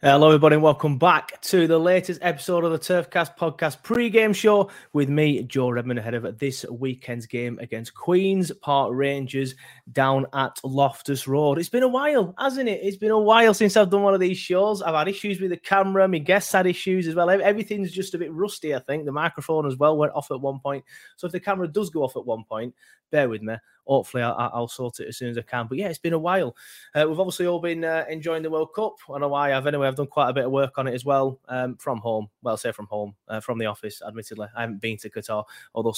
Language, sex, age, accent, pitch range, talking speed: English, male, 20-39, British, 120-175 Hz, 255 wpm